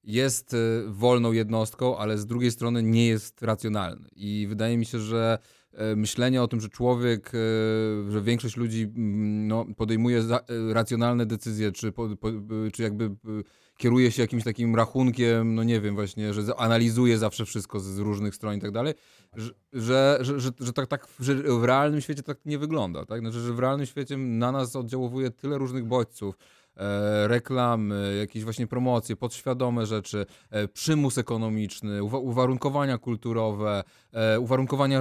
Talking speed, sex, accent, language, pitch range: 145 wpm, male, native, Polish, 110-125 Hz